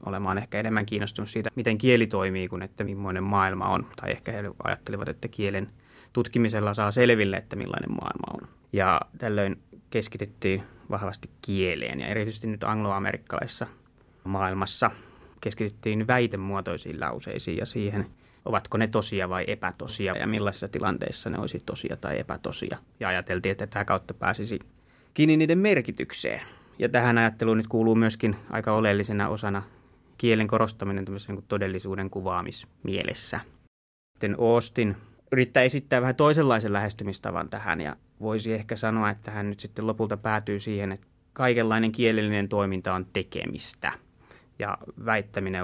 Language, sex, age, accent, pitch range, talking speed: Finnish, male, 20-39, native, 95-115 Hz, 135 wpm